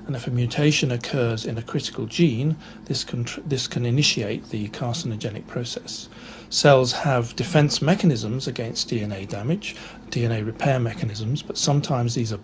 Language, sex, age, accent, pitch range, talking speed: English, male, 50-69, British, 120-150 Hz, 150 wpm